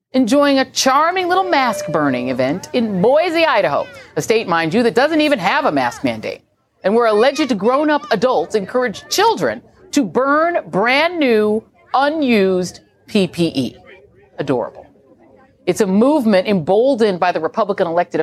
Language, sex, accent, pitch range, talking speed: English, female, American, 200-290 Hz, 135 wpm